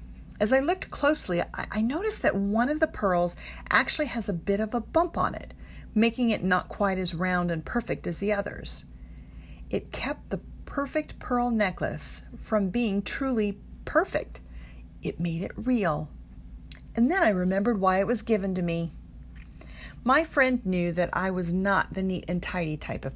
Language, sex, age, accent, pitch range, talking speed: English, female, 40-59, American, 140-225 Hz, 175 wpm